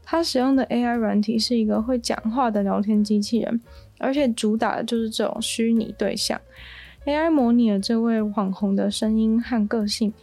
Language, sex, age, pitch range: Chinese, female, 20-39, 215-250 Hz